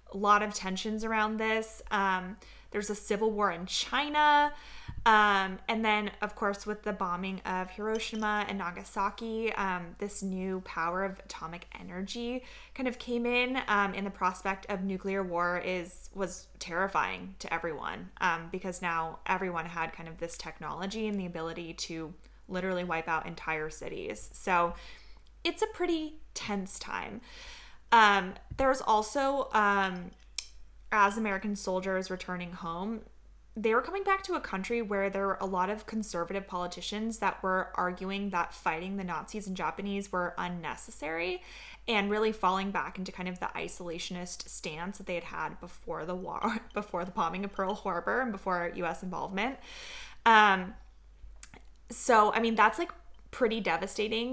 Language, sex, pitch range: English, female, 180-220 Hz